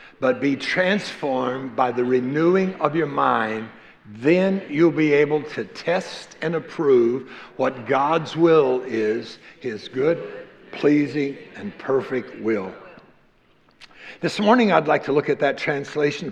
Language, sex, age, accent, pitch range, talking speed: English, male, 60-79, American, 145-215 Hz, 130 wpm